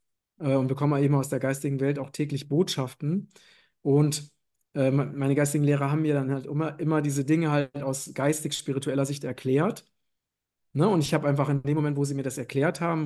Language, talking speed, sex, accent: German, 190 wpm, male, German